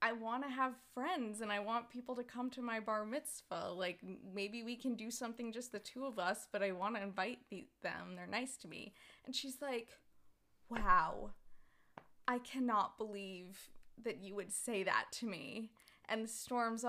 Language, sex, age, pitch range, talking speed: English, female, 20-39, 205-250 Hz, 190 wpm